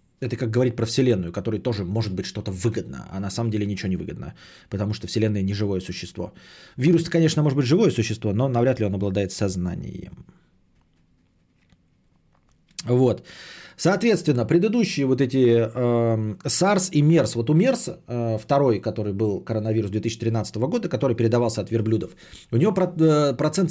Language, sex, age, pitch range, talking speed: Bulgarian, male, 30-49, 110-170 Hz, 150 wpm